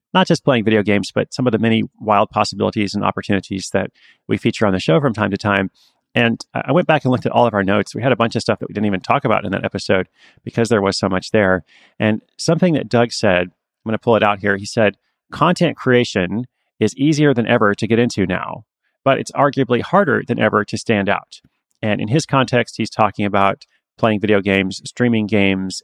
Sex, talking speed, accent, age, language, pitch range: male, 235 wpm, American, 30-49, English, 100-120 Hz